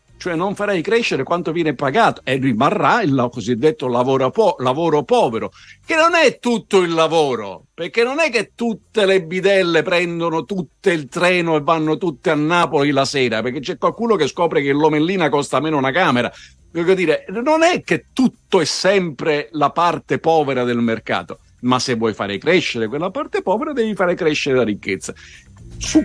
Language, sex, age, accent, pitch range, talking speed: Italian, male, 50-69, native, 130-190 Hz, 175 wpm